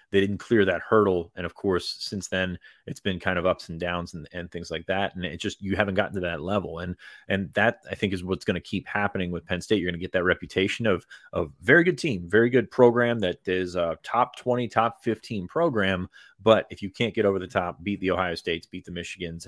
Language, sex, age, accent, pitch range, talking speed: English, male, 30-49, American, 90-105 Hz, 255 wpm